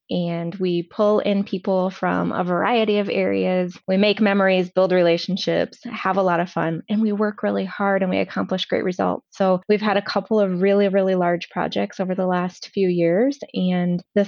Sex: female